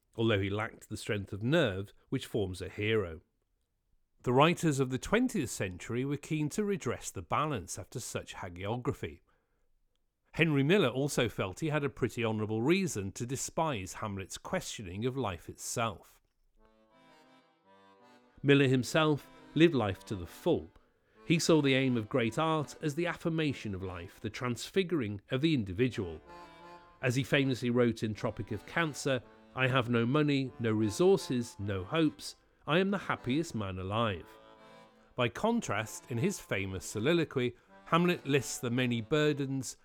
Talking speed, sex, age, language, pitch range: 150 wpm, male, 40-59, English, 105-145 Hz